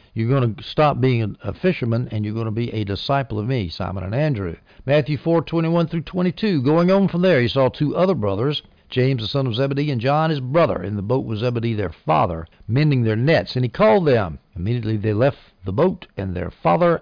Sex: male